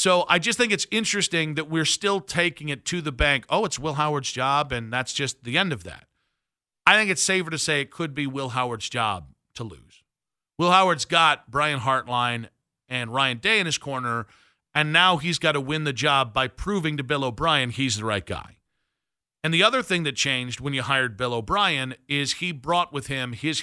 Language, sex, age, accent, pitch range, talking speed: English, male, 40-59, American, 130-165 Hz, 215 wpm